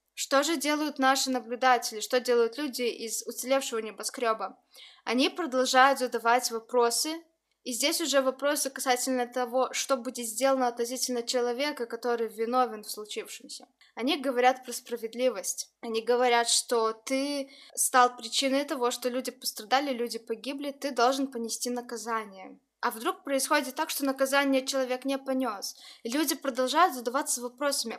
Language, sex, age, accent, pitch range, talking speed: Russian, female, 20-39, native, 240-275 Hz, 135 wpm